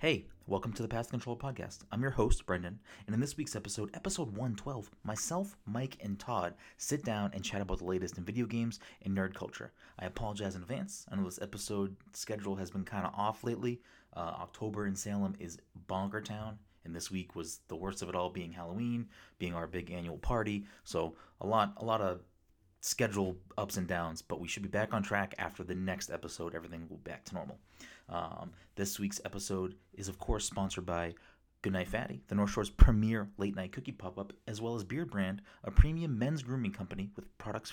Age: 30-49